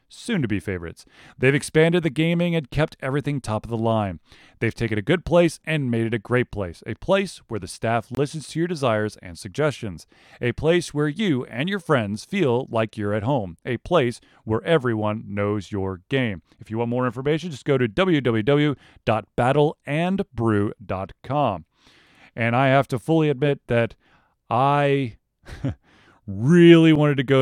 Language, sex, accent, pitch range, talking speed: English, male, American, 110-150 Hz, 170 wpm